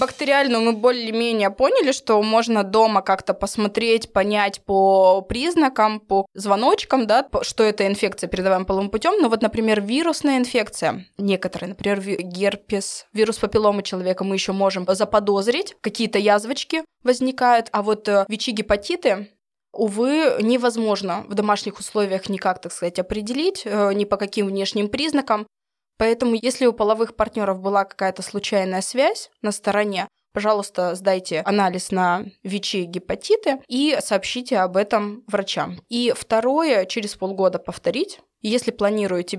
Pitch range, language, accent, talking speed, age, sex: 195-240 Hz, Russian, native, 130 wpm, 20-39, female